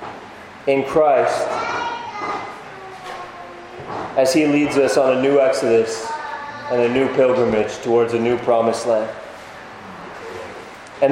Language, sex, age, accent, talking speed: English, male, 30-49, American, 110 wpm